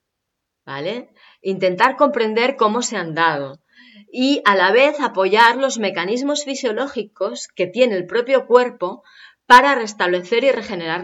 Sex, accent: female, Spanish